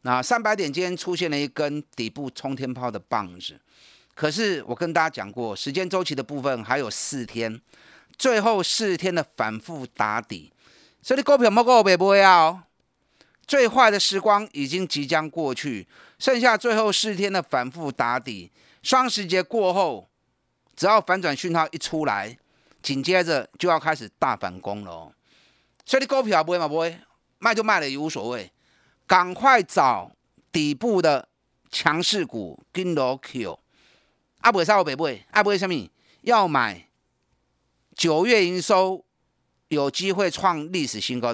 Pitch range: 130-195 Hz